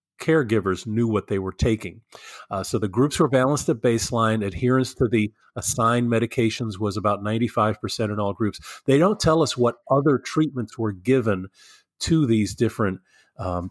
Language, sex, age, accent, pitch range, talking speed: English, male, 40-59, American, 105-125 Hz, 165 wpm